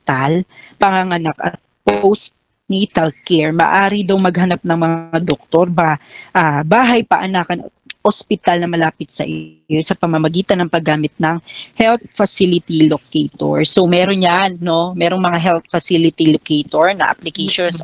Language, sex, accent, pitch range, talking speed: Filipino, female, native, 160-195 Hz, 135 wpm